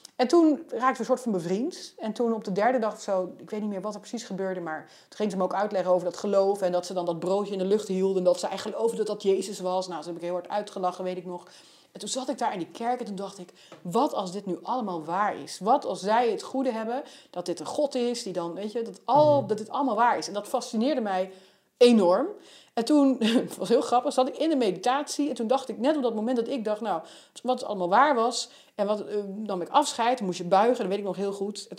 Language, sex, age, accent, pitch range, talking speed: Dutch, female, 30-49, Dutch, 195-250 Hz, 290 wpm